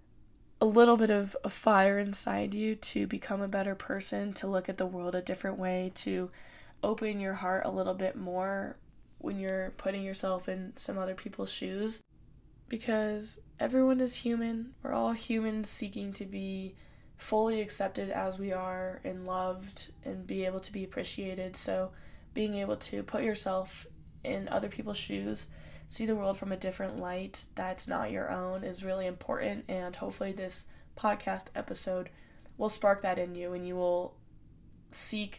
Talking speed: 170 wpm